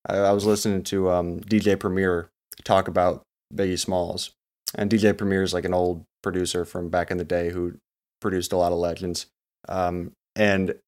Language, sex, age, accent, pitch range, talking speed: English, male, 20-39, American, 95-115 Hz, 175 wpm